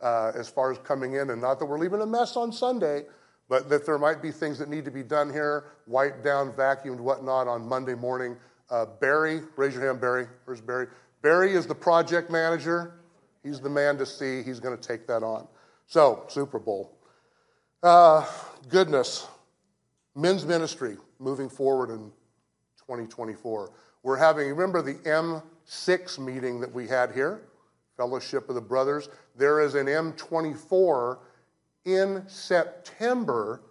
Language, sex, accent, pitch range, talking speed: English, male, American, 130-160 Hz, 160 wpm